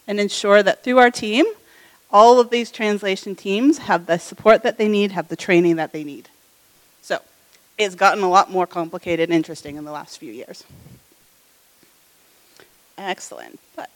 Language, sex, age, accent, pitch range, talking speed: English, female, 30-49, American, 175-245 Hz, 165 wpm